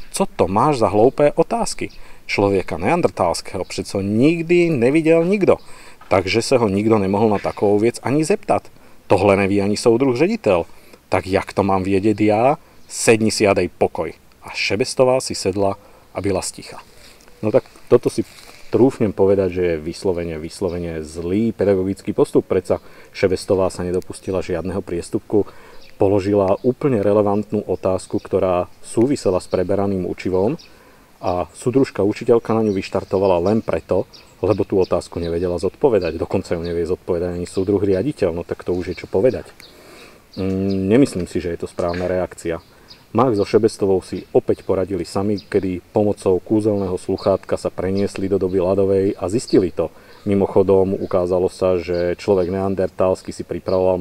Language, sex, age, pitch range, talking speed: Slovak, male, 40-59, 95-110 Hz, 150 wpm